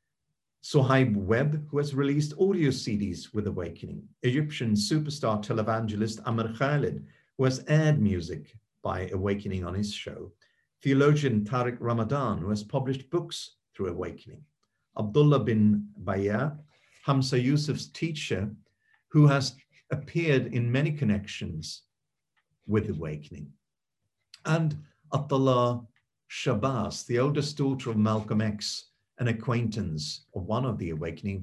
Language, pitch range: English, 105-145 Hz